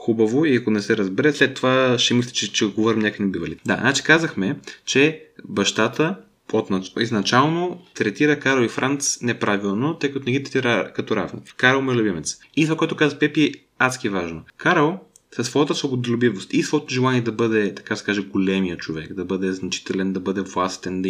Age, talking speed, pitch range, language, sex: 20-39, 175 wpm, 110-145 Hz, Bulgarian, male